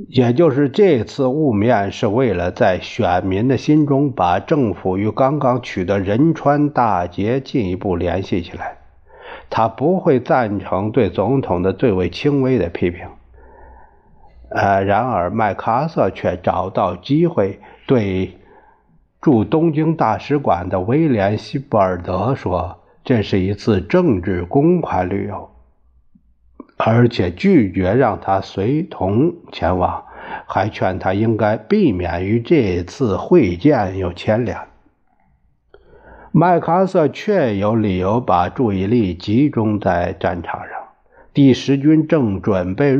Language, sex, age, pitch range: Chinese, male, 50-69, 95-140 Hz